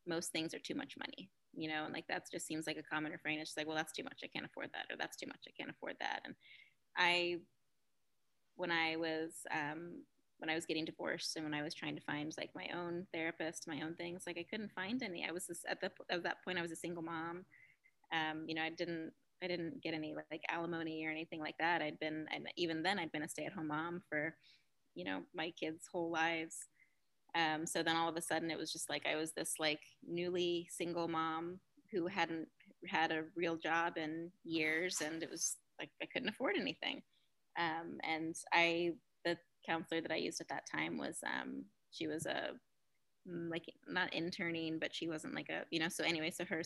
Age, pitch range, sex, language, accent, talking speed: 20-39, 160-175 Hz, female, English, American, 225 wpm